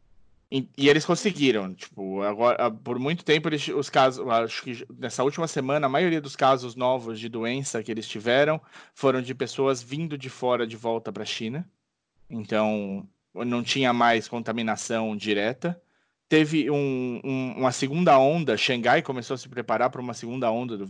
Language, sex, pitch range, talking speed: Portuguese, male, 115-145 Hz, 170 wpm